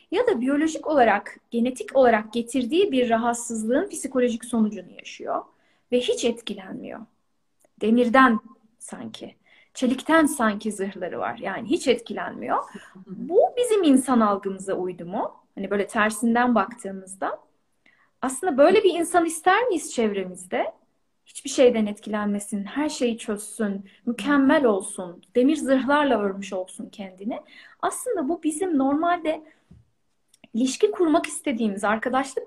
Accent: native